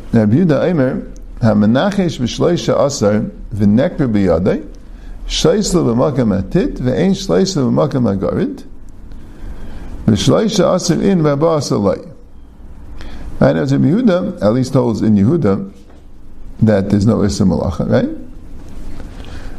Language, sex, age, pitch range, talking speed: English, male, 50-69, 90-130 Hz, 105 wpm